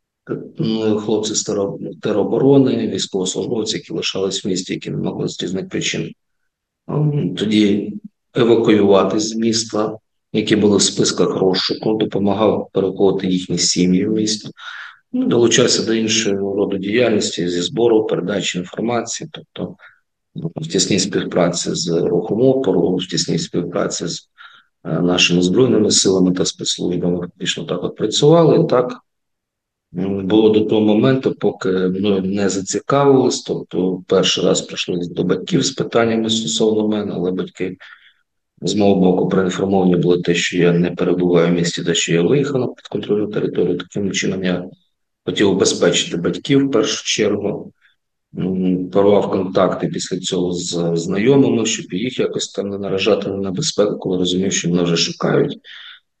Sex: male